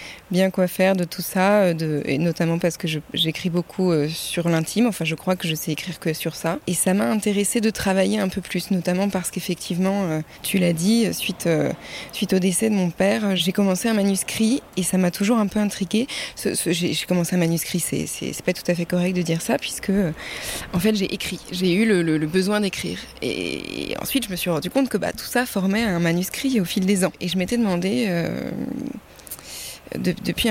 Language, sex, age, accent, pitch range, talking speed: French, female, 20-39, French, 175-210 Hz, 230 wpm